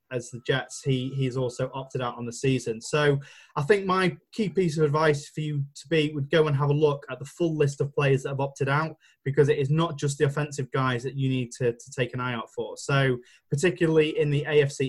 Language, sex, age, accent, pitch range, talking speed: English, male, 20-39, British, 125-150 Hz, 250 wpm